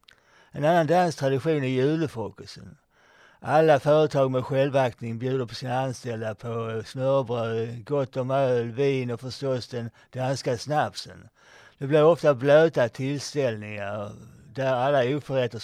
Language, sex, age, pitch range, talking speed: Swedish, male, 60-79, 120-150 Hz, 125 wpm